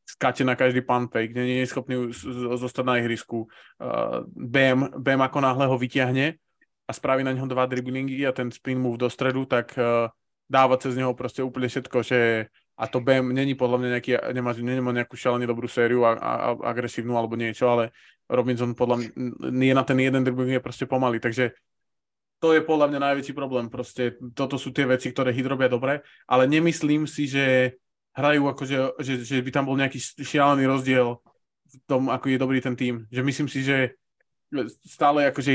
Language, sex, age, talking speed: Slovak, male, 20-39, 195 wpm